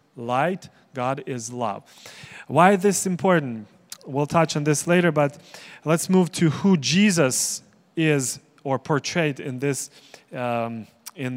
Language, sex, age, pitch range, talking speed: English, male, 30-49, 135-180 Hz, 135 wpm